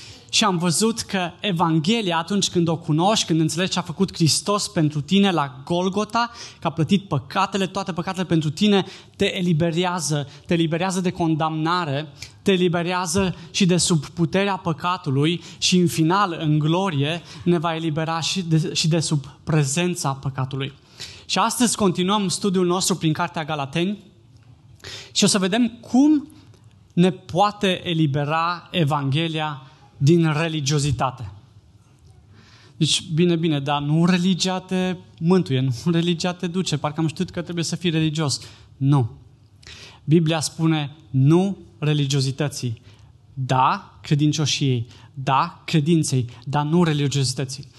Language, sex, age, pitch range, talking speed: Romanian, male, 20-39, 140-180 Hz, 130 wpm